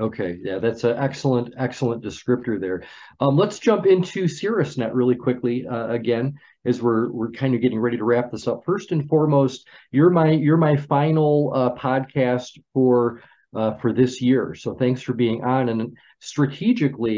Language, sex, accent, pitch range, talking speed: English, male, American, 120-145 Hz, 175 wpm